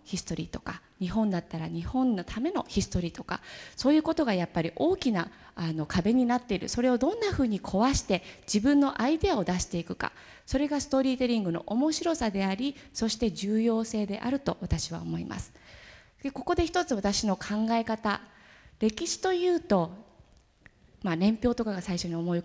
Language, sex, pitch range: Japanese, female, 180-265 Hz